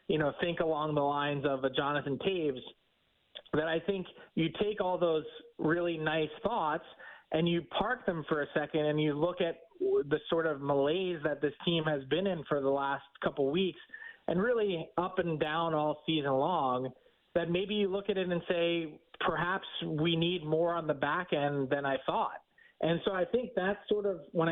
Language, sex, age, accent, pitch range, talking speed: English, male, 30-49, American, 150-185 Hz, 200 wpm